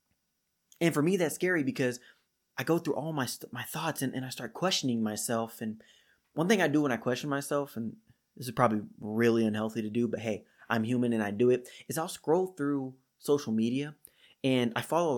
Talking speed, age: 220 wpm, 20-39